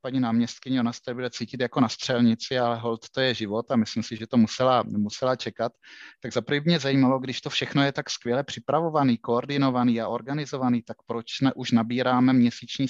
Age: 30-49